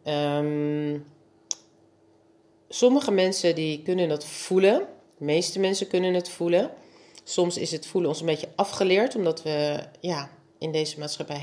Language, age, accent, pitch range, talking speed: Dutch, 40-59, Dutch, 150-185 Hz, 140 wpm